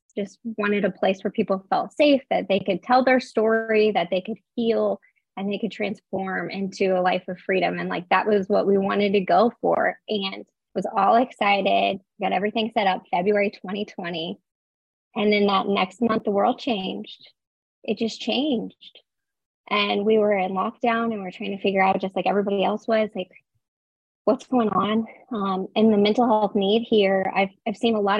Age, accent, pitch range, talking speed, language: 20-39, American, 190-220 Hz, 190 wpm, English